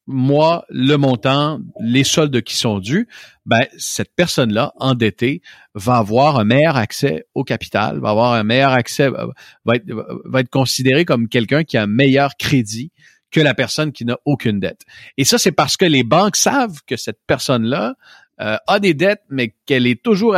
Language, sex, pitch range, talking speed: French, male, 115-150 Hz, 180 wpm